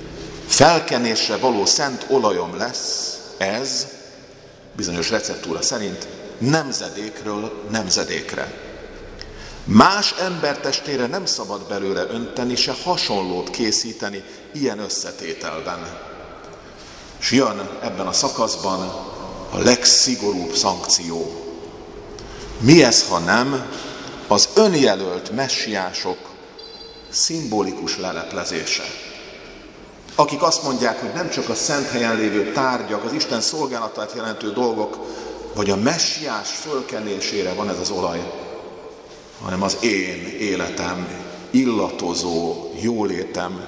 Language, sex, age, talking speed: Hungarian, male, 50-69, 95 wpm